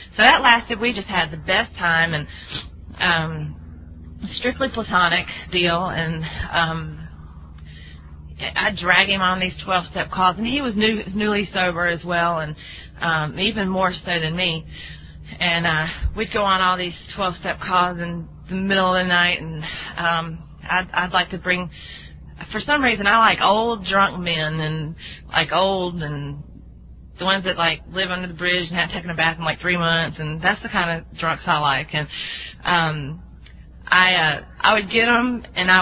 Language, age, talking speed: English, 30-49, 180 wpm